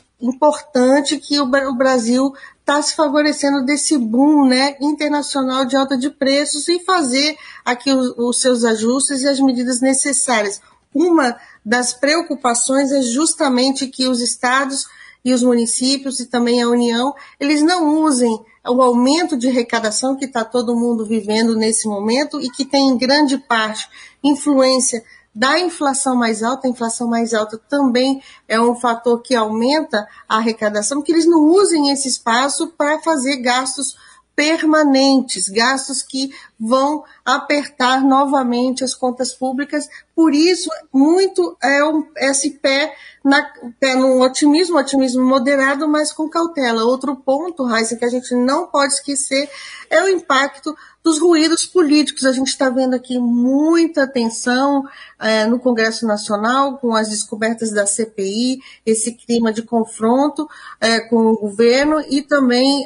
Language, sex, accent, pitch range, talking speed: Portuguese, female, Brazilian, 240-290 Hz, 145 wpm